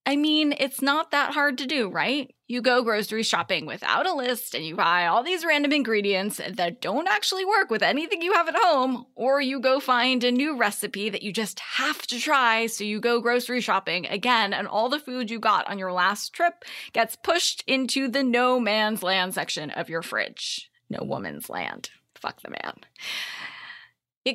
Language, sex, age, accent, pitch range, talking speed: English, female, 20-39, American, 215-285 Hz, 195 wpm